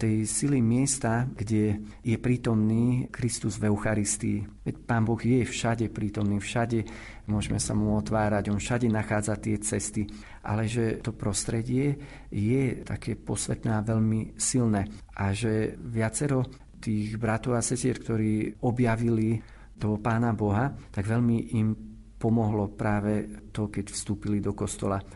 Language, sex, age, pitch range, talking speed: Slovak, male, 40-59, 105-115 Hz, 135 wpm